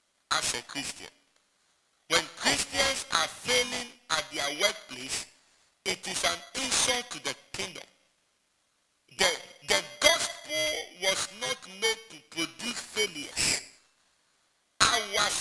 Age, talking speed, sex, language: 60-79, 105 wpm, male, English